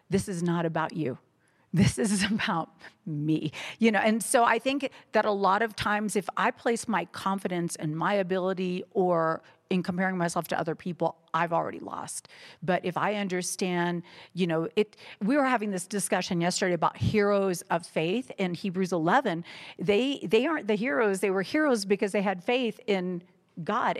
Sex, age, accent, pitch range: female, 50-69, American, 175-220 Hz